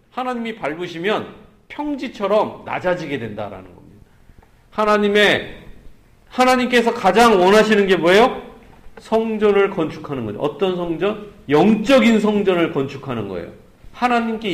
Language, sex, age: Korean, male, 40-59